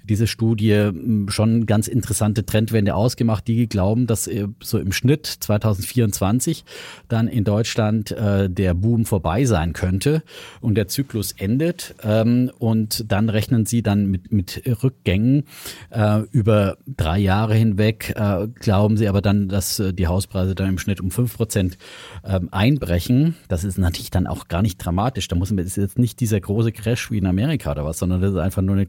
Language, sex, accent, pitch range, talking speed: German, male, German, 95-115 Hz, 165 wpm